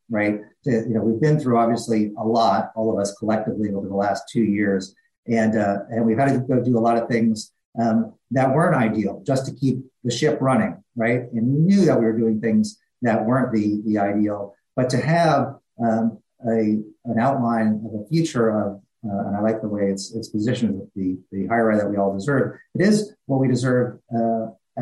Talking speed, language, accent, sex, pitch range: 215 wpm, English, American, male, 105-125 Hz